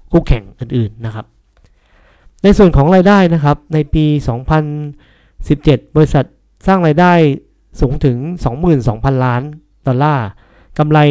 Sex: male